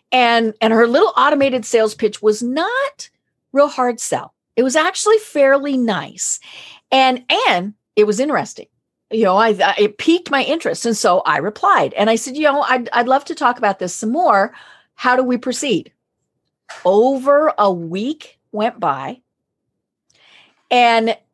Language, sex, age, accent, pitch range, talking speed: English, female, 50-69, American, 210-285 Hz, 165 wpm